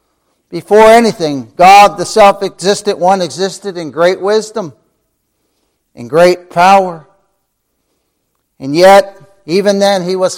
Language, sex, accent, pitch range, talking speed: English, male, American, 145-195 Hz, 110 wpm